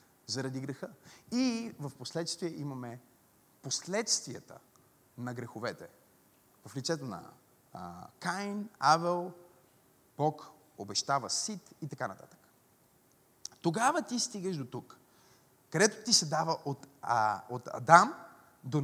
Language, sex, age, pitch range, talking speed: Bulgarian, male, 30-49, 155-245 Hz, 100 wpm